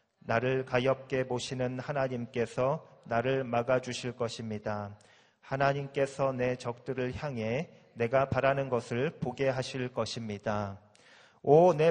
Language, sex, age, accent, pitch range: Korean, male, 40-59, native, 125-150 Hz